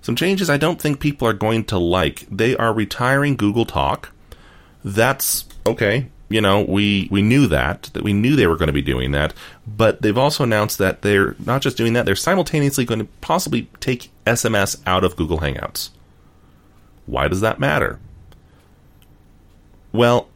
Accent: American